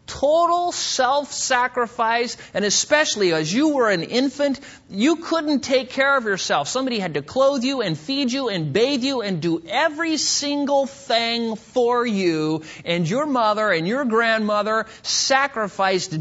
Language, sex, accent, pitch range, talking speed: English, male, American, 170-255 Hz, 150 wpm